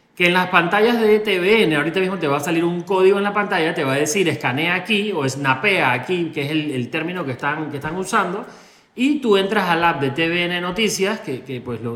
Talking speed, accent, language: 240 wpm, Argentinian, Spanish